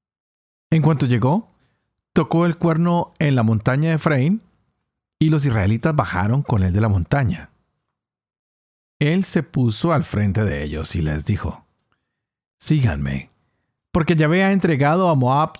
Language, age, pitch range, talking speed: Spanish, 40-59, 105-155 Hz, 140 wpm